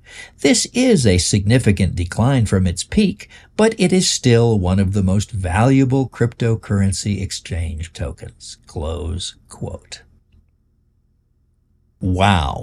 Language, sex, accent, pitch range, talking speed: English, male, American, 90-115 Hz, 110 wpm